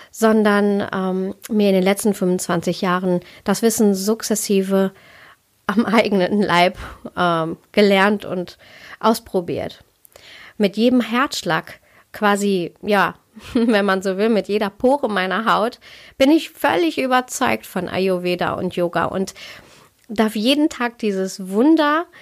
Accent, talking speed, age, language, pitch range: German, 125 wpm, 30-49, German, 190-245 Hz